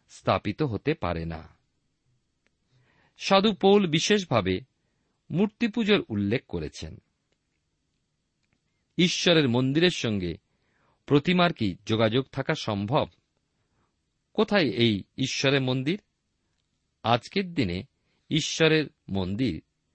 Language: Bengali